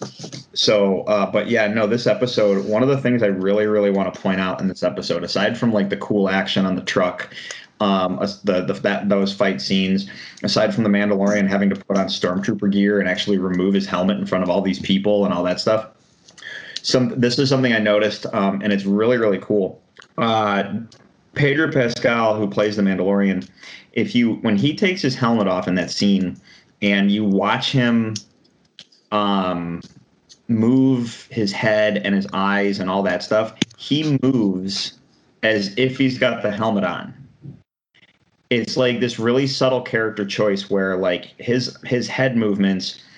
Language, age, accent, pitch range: English, 30-49, American, 100-120 Hz